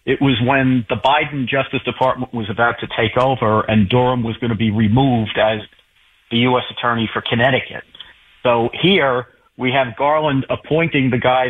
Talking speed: 170 wpm